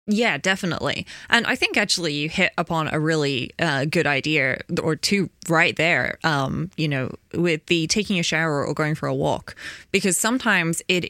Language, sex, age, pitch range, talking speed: English, female, 20-39, 150-180 Hz, 185 wpm